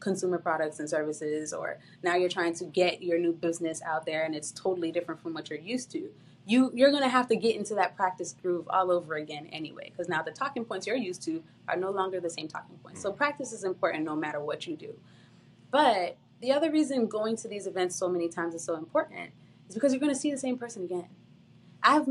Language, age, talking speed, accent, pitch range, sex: English, 20-39, 240 wpm, American, 175-275 Hz, female